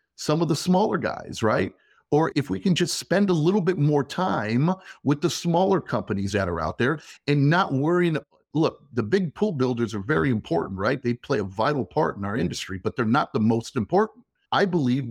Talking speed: 210 wpm